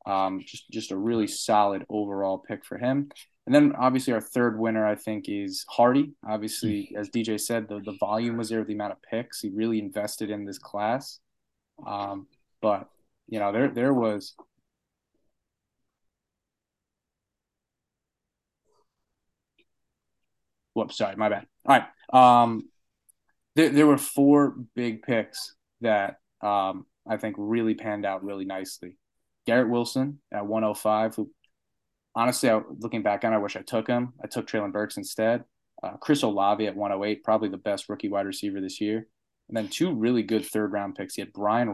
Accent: American